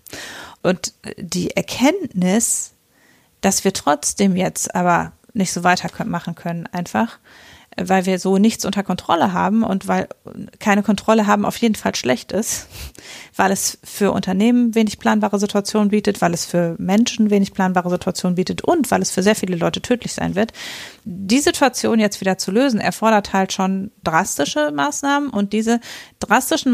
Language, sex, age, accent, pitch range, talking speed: German, female, 30-49, German, 185-225 Hz, 155 wpm